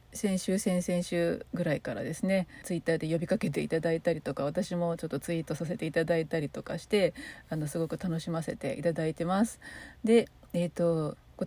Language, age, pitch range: Japanese, 40-59, 160-190 Hz